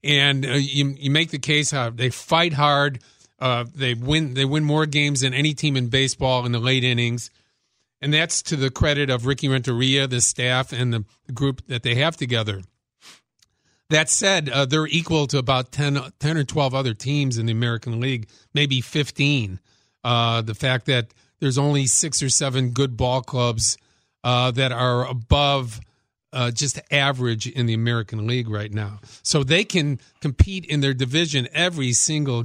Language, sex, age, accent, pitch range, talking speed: English, male, 50-69, American, 115-145 Hz, 180 wpm